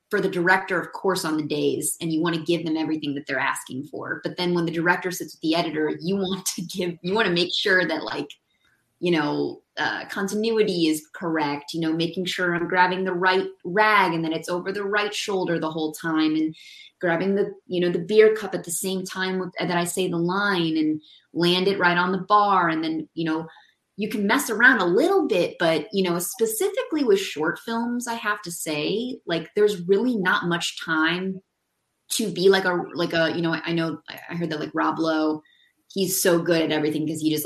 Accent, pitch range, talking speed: American, 160-190 Hz, 225 wpm